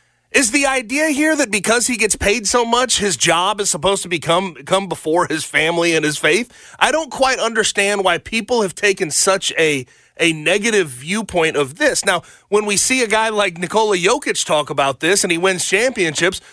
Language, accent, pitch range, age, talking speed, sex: English, American, 155-205 Hz, 30-49, 200 wpm, male